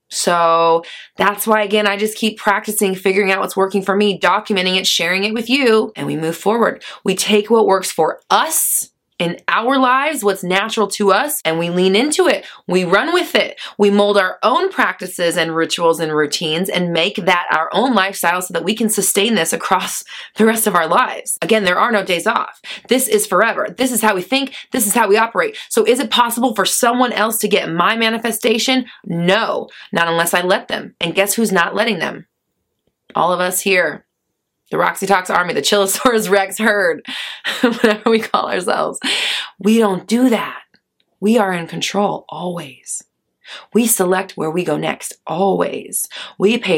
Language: English